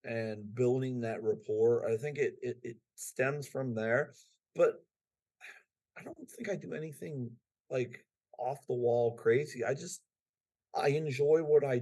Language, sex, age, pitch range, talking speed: English, male, 40-59, 115-145 Hz, 150 wpm